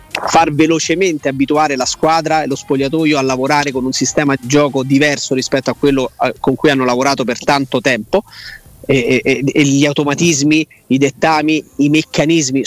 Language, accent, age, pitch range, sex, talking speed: Italian, native, 30-49, 140-165 Hz, male, 165 wpm